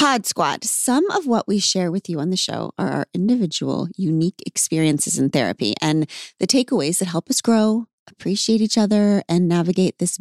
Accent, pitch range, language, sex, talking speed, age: American, 170-235 Hz, English, female, 190 wpm, 30-49